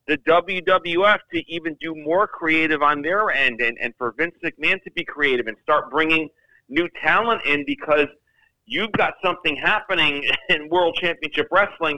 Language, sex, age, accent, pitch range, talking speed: English, male, 40-59, American, 125-165 Hz, 165 wpm